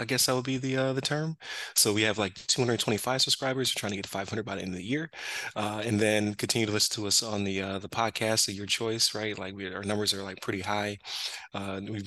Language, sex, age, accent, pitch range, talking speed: English, male, 20-39, American, 95-115 Hz, 270 wpm